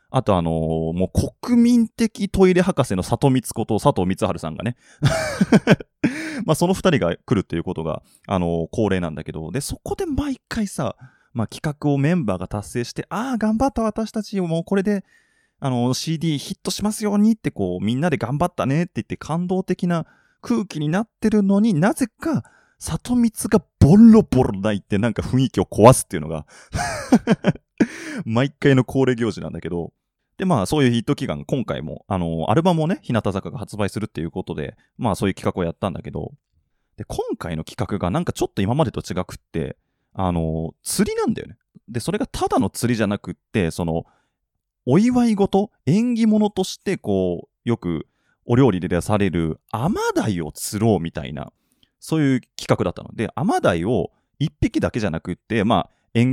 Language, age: Japanese, 20-39